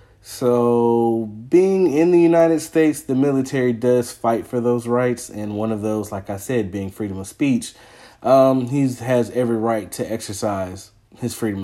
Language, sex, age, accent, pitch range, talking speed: English, male, 30-49, American, 105-130 Hz, 170 wpm